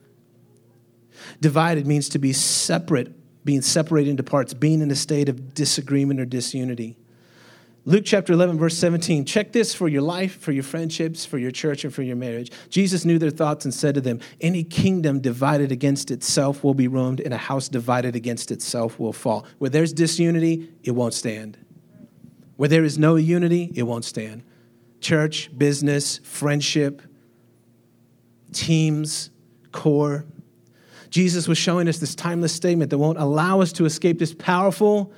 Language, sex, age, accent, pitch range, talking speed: English, male, 30-49, American, 125-160 Hz, 160 wpm